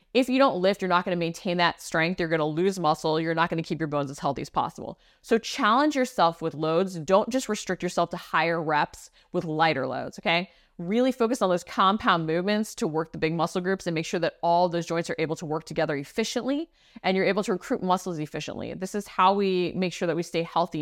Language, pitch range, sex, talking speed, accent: English, 160-190 Hz, female, 245 wpm, American